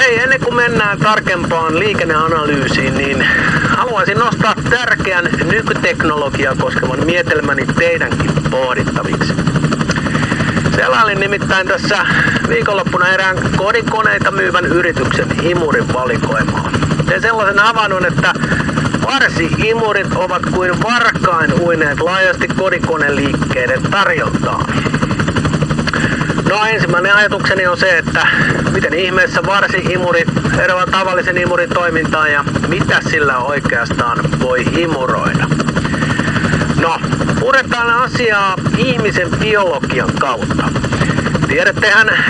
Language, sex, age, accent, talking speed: Finnish, male, 50-69, native, 90 wpm